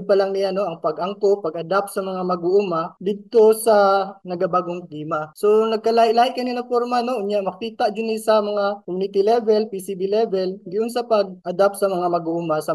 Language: Filipino